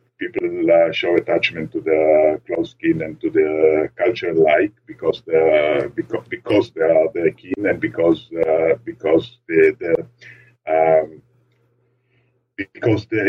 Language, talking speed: English, 135 wpm